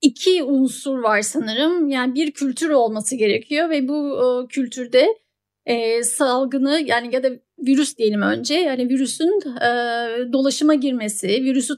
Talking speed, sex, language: 140 wpm, female, Turkish